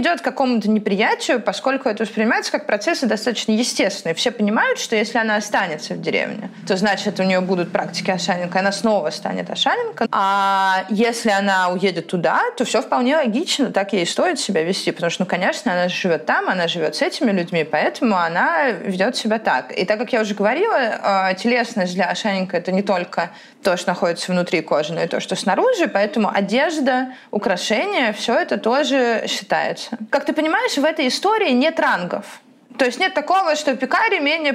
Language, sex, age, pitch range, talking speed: Russian, female, 20-39, 200-270 Hz, 185 wpm